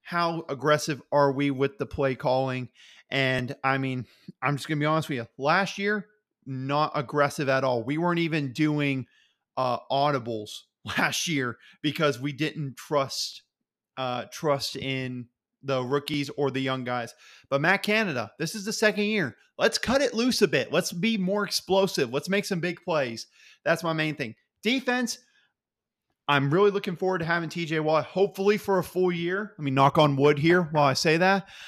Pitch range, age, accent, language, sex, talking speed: 135-175 Hz, 30-49, American, English, male, 185 wpm